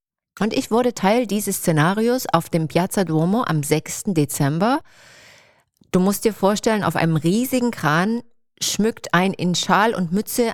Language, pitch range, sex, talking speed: German, 150-195 Hz, female, 155 wpm